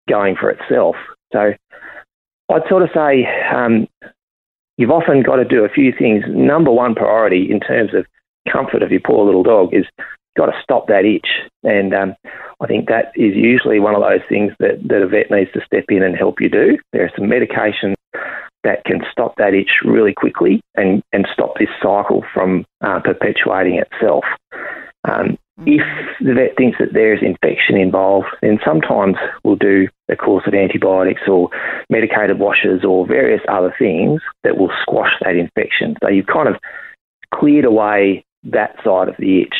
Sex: male